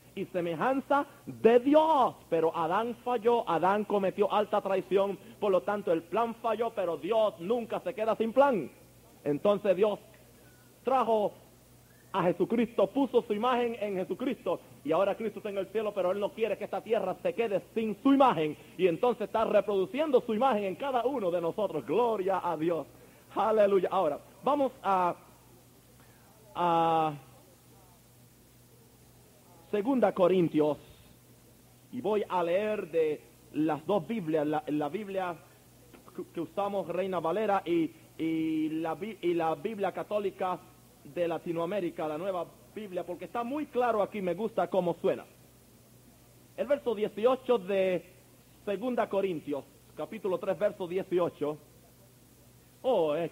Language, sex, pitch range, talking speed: Spanish, male, 170-220 Hz, 135 wpm